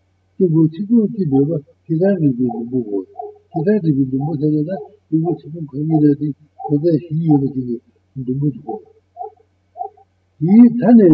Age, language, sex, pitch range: 60-79, Italian, male, 120-190 Hz